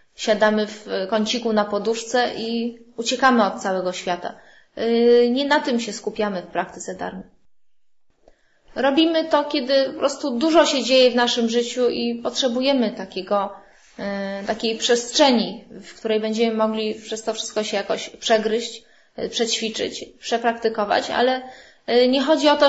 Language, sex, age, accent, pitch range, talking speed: English, female, 20-39, Polish, 215-255 Hz, 135 wpm